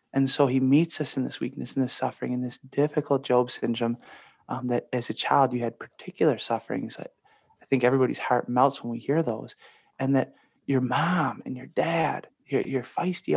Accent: American